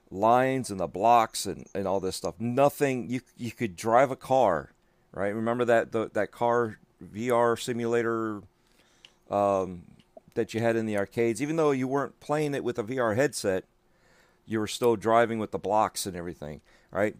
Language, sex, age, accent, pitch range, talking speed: English, male, 40-59, American, 100-125 Hz, 180 wpm